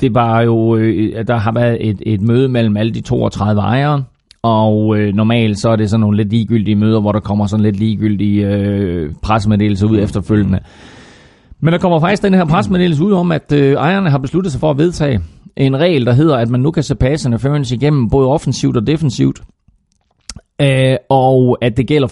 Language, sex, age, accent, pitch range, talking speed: Danish, male, 30-49, native, 110-140 Hz, 195 wpm